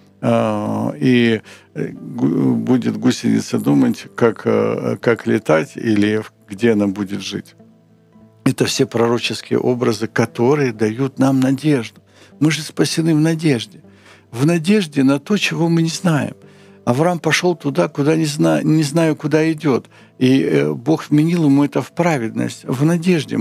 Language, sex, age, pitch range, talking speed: Ukrainian, male, 60-79, 115-155 Hz, 130 wpm